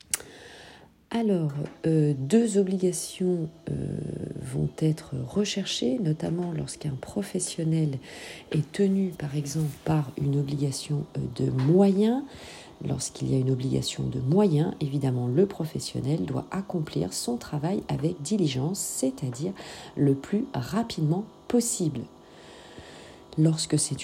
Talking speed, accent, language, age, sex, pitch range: 105 wpm, French, French, 40-59, female, 135-185 Hz